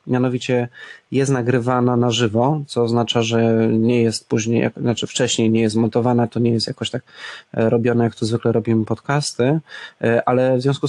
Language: Polish